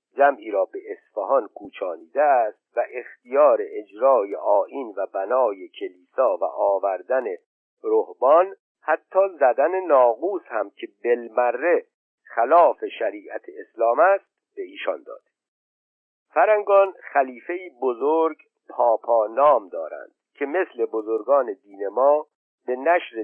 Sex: male